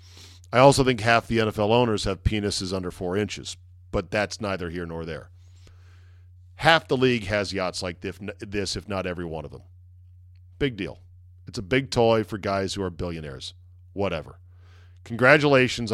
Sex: male